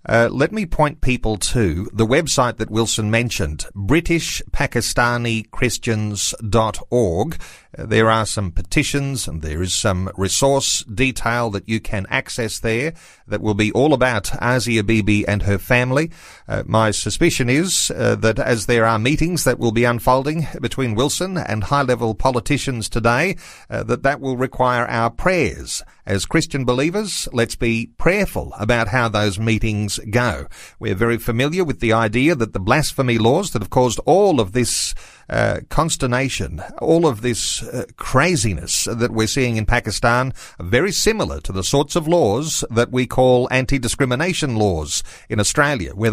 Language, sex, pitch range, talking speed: English, male, 105-130 Hz, 155 wpm